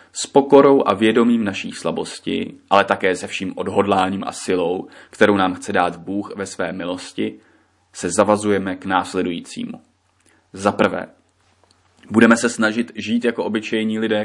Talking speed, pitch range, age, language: 145 wpm, 100-115 Hz, 20-39, Czech